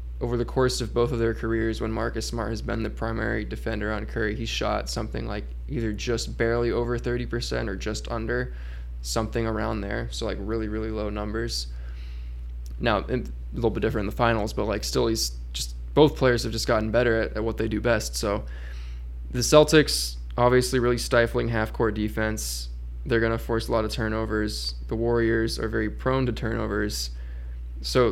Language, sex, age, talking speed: English, male, 20-39, 190 wpm